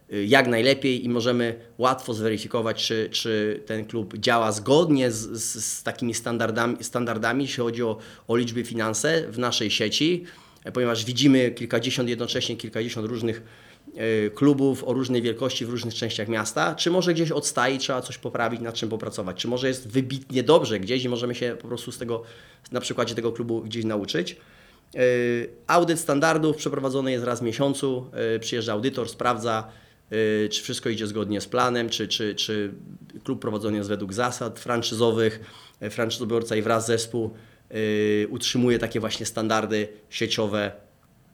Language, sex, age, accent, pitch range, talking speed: Polish, male, 20-39, native, 110-130 Hz, 150 wpm